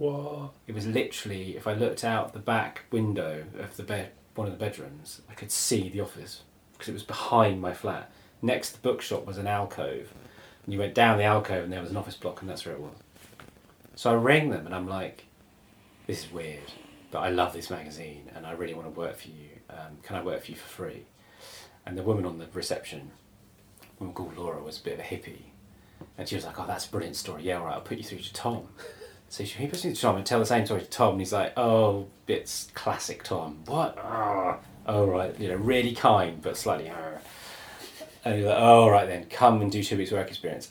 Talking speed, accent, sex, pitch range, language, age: 235 wpm, British, male, 90-115 Hz, English, 30-49